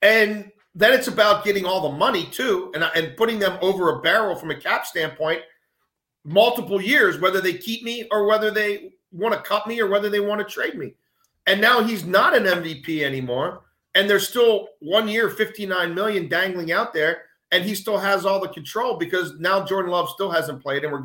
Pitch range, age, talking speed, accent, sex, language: 155-210 Hz, 40-59, 210 wpm, American, male, English